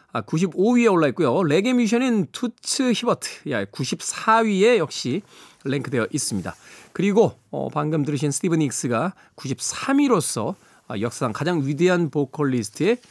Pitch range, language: 140-215 Hz, Korean